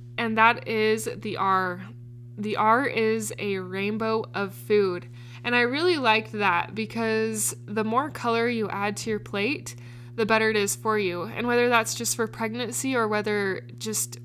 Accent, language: American, English